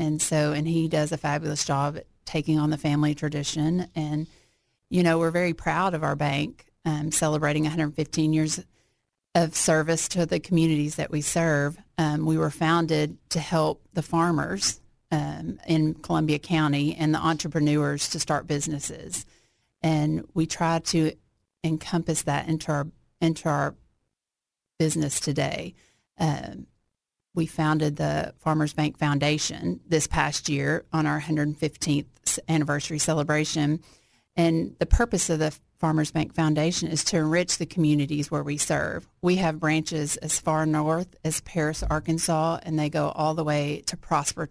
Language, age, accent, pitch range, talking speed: English, 40-59, American, 150-165 Hz, 150 wpm